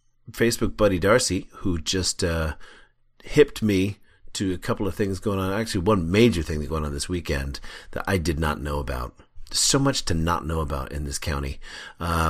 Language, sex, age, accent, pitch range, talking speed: English, male, 40-59, American, 80-110 Hz, 195 wpm